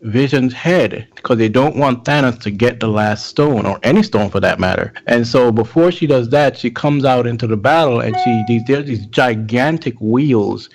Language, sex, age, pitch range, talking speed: English, male, 30-49, 110-140 Hz, 200 wpm